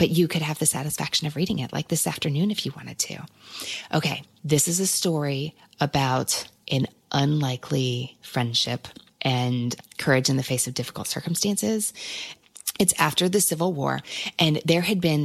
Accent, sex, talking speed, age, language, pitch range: American, female, 165 wpm, 30-49, English, 130-160 Hz